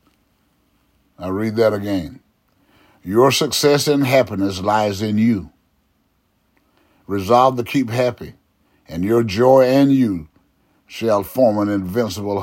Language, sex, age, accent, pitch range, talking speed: English, male, 60-79, American, 100-110 Hz, 115 wpm